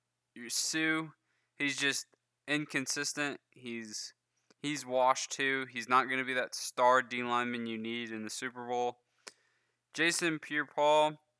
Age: 20-39